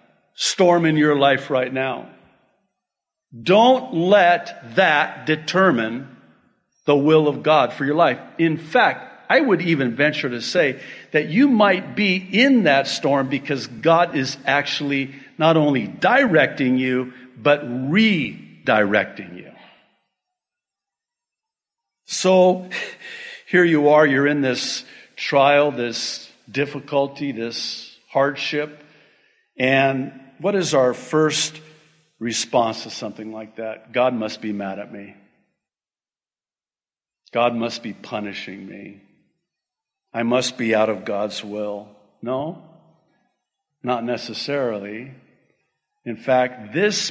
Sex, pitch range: male, 120-155 Hz